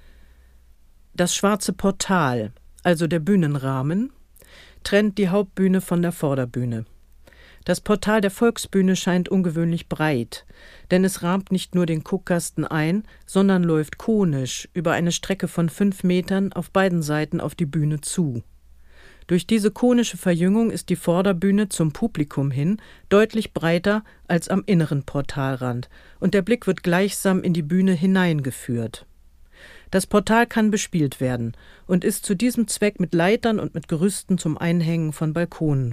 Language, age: German, 50-69